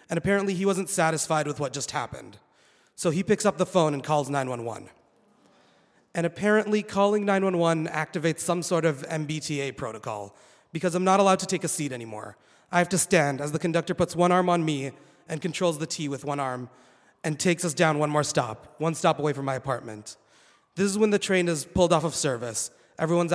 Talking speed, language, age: 205 wpm, English, 30-49